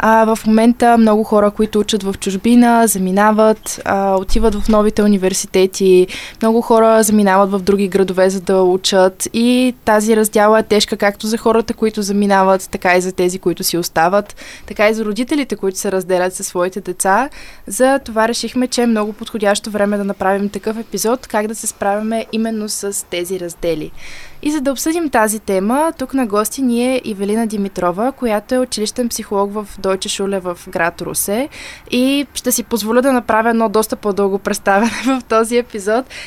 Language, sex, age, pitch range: Bulgarian, female, 20-39, 200-235 Hz